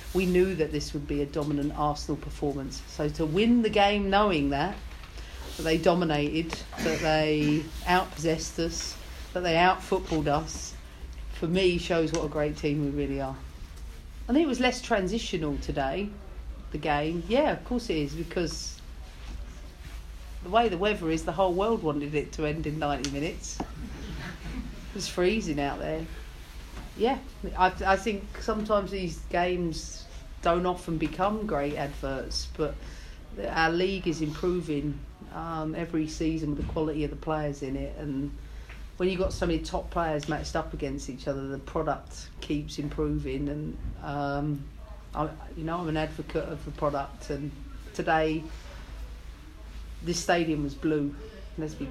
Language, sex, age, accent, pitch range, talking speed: English, female, 40-59, British, 140-170 Hz, 160 wpm